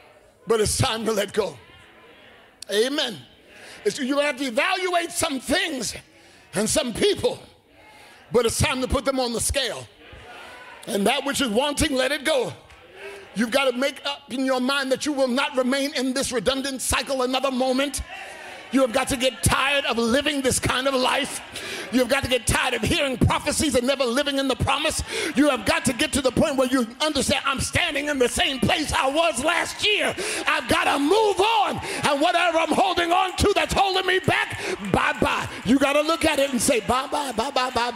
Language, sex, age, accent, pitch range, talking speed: English, male, 50-69, American, 255-310 Hz, 205 wpm